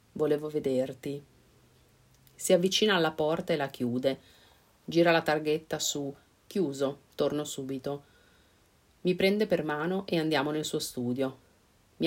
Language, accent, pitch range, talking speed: Italian, native, 130-165 Hz, 130 wpm